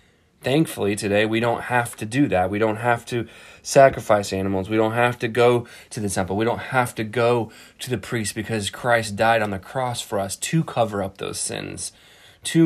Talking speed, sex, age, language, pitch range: 210 wpm, male, 20-39, English, 105-135 Hz